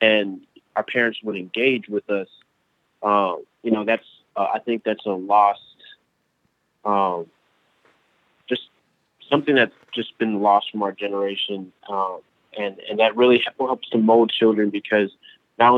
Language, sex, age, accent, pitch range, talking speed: English, male, 20-39, American, 100-115 Hz, 145 wpm